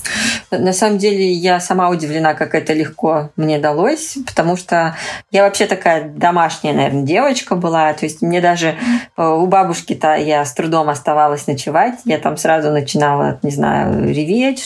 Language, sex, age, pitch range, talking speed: Russian, female, 20-39, 155-195 Hz, 155 wpm